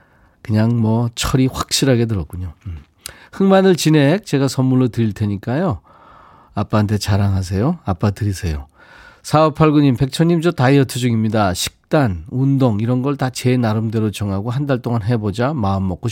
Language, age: Korean, 40-59